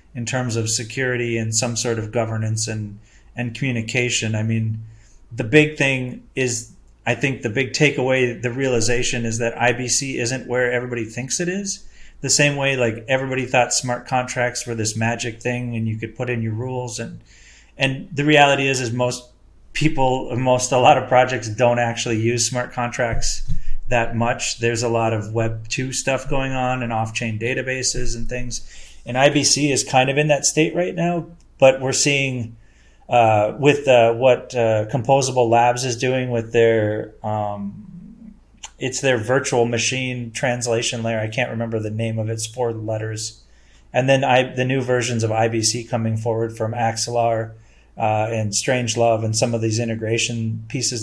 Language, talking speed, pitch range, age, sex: English, 175 wpm, 115-130 Hz, 30-49, male